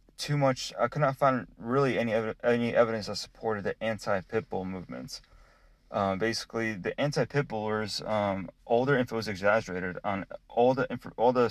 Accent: American